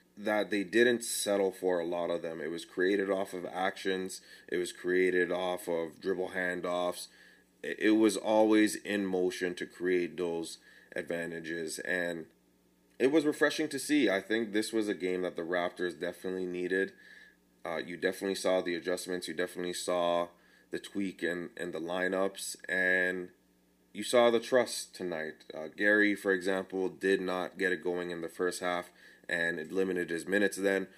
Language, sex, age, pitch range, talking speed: English, male, 20-39, 85-100 Hz, 170 wpm